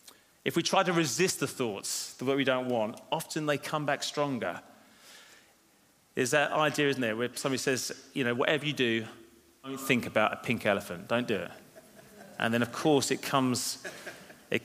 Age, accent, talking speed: 30-49, British, 190 wpm